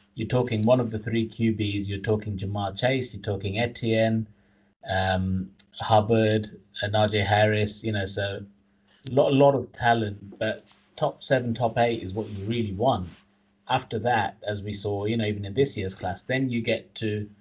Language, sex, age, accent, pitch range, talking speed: English, male, 30-49, British, 100-115 Hz, 180 wpm